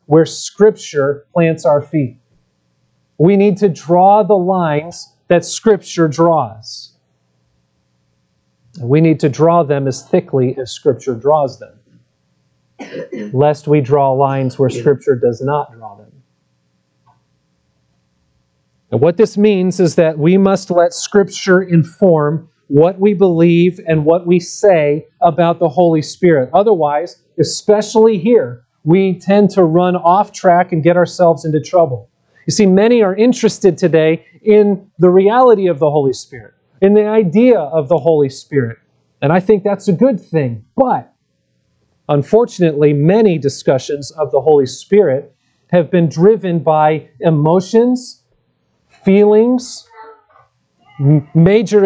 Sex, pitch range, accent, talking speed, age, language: male, 145-200 Hz, American, 130 wpm, 40-59, English